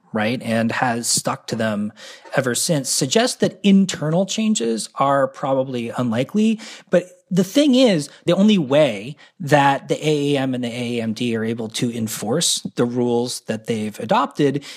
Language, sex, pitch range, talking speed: English, male, 125-185 Hz, 150 wpm